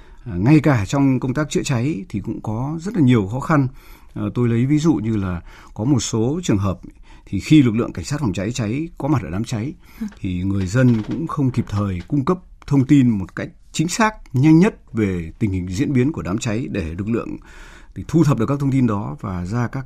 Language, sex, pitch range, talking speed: Vietnamese, male, 95-135 Hz, 240 wpm